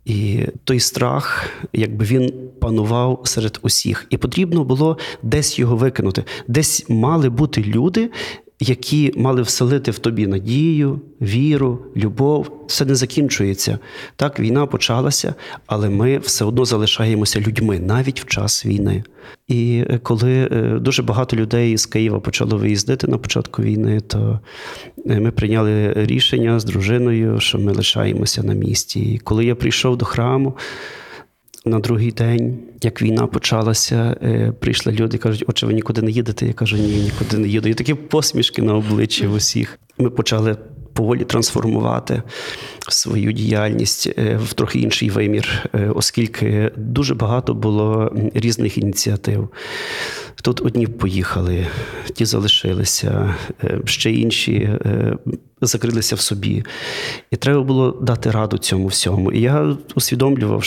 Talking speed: 130 wpm